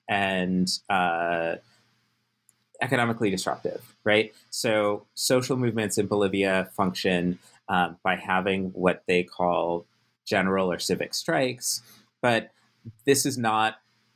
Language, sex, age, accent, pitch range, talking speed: English, male, 30-49, American, 95-115 Hz, 105 wpm